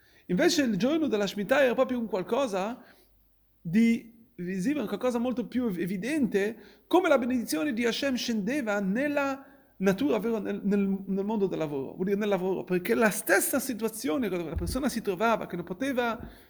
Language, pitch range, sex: Italian, 220-275 Hz, male